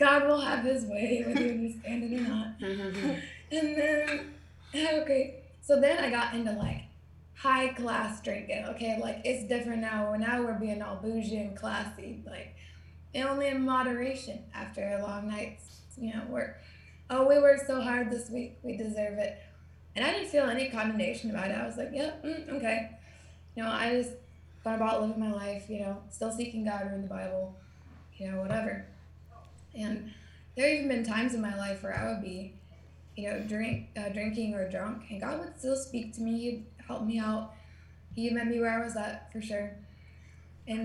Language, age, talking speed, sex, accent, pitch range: English, 20-39, 190 wpm, female, American, 205-250 Hz